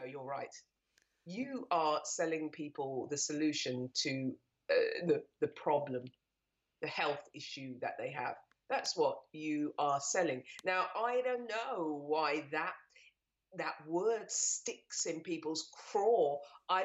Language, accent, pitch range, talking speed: English, British, 155-225 Hz, 130 wpm